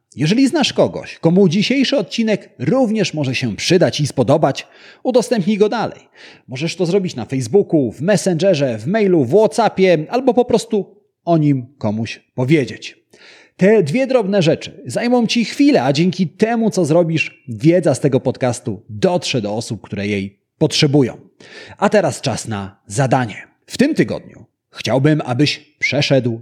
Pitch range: 125-195 Hz